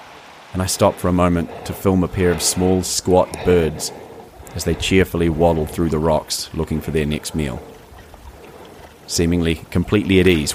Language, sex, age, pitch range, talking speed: English, male, 30-49, 80-95 Hz, 170 wpm